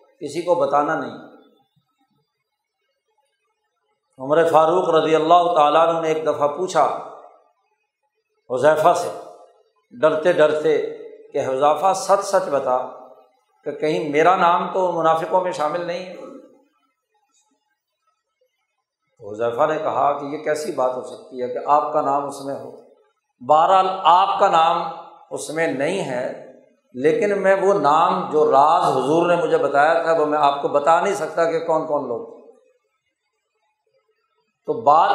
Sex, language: male, Urdu